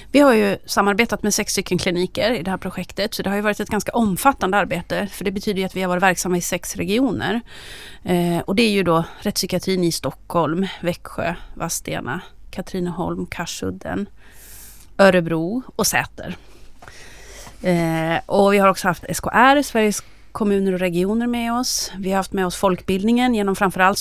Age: 30-49